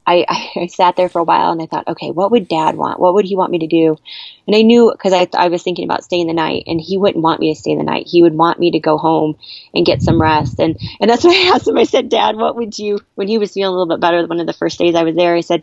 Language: English